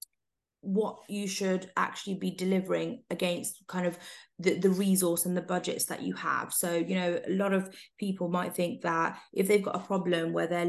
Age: 20-39